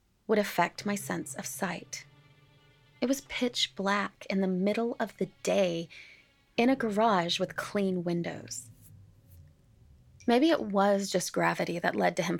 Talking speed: 150 wpm